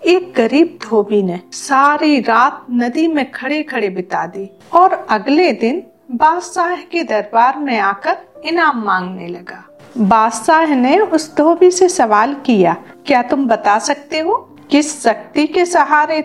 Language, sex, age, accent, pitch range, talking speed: Hindi, female, 50-69, native, 230-335 Hz, 145 wpm